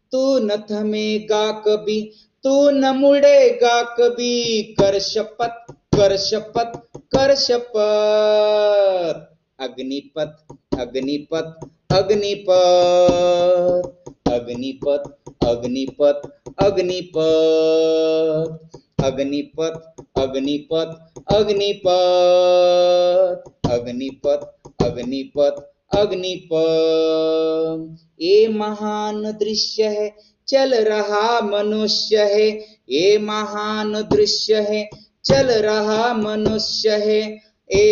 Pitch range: 160-215 Hz